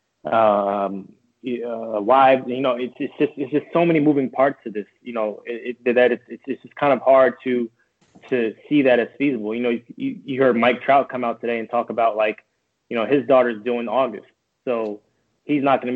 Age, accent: 20-39, American